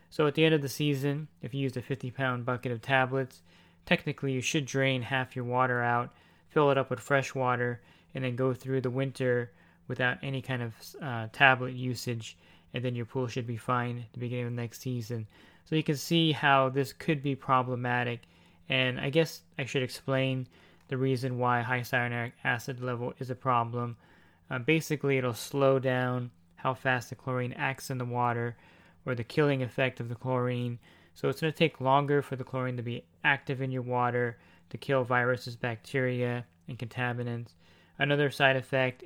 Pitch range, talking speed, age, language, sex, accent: 120-135 Hz, 190 wpm, 20-39, English, male, American